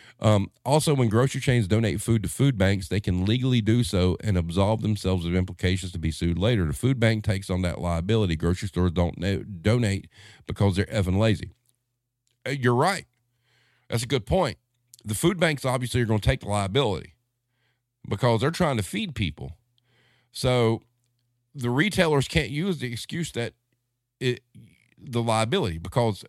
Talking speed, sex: 165 wpm, male